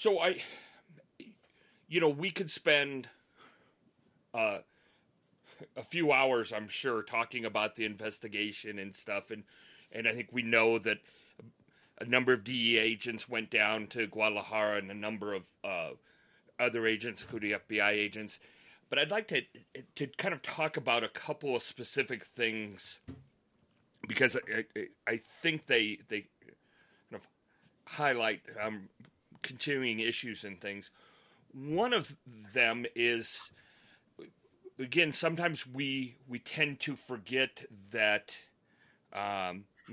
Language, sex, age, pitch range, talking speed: English, male, 30-49, 105-130 Hz, 130 wpm